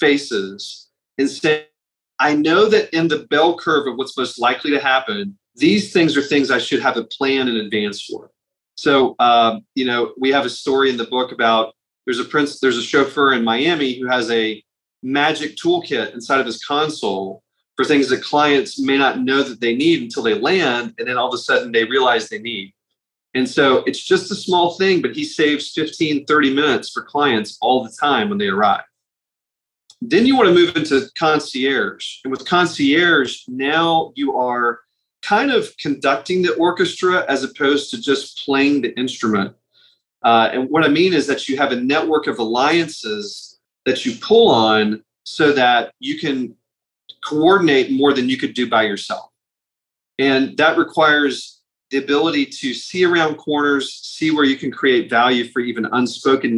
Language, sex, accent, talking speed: English, male, American, 185 wpm